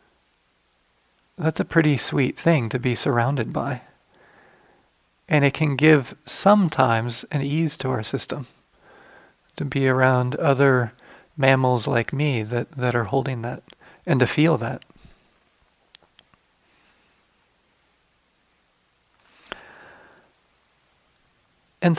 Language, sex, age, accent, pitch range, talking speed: English, male, 40-59, American, 130-160 Hz, 100 wpm